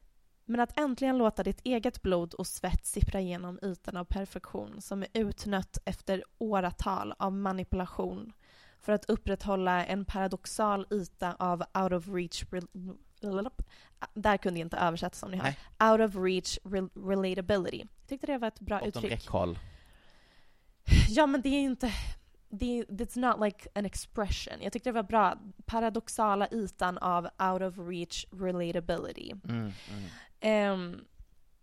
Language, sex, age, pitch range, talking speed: Swedish, female, 20-39, 180-220 Hz, 140 wpm